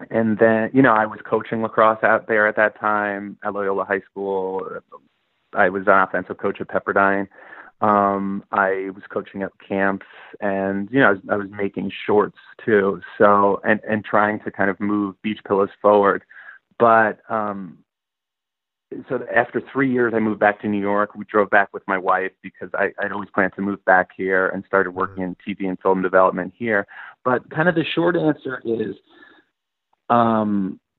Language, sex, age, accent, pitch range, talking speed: English, male, 30-49, American, 100-110 Hz, 185 wpm